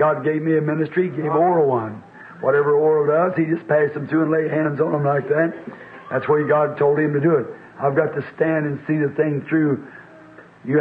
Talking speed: 235 wpm